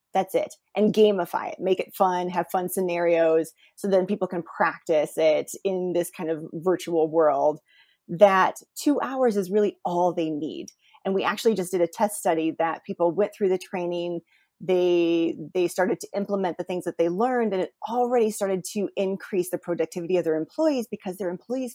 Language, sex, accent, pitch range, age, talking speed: English, female, American, 175-215 Hz, 30-49, 190 wpm